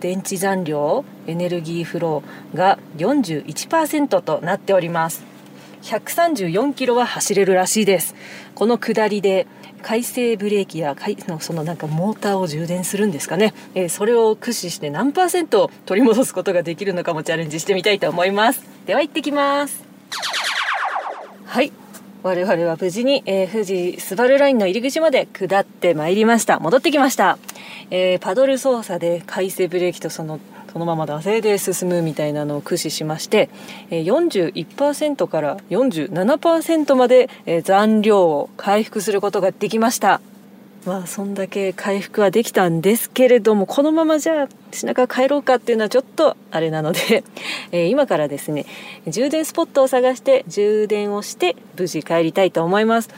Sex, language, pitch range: female, Japanese, 175-235 Hz